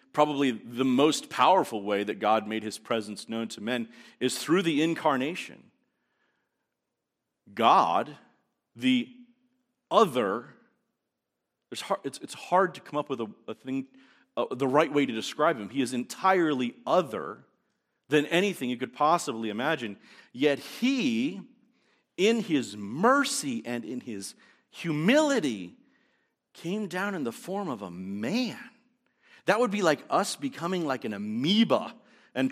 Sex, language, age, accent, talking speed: male, English, 40-59, American, 130 wpm